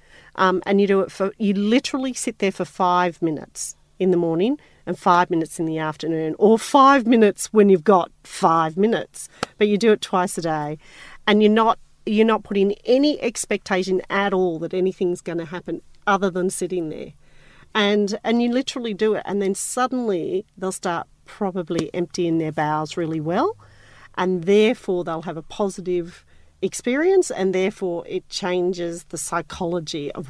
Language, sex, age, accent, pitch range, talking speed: English, female, 40-59, Australian, 165-205 Hz, 170 wpm